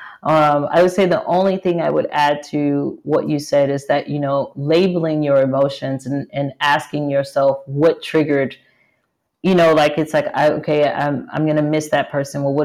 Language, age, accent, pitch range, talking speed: English, 40-59, American, 140-170 Hz, 205 wpm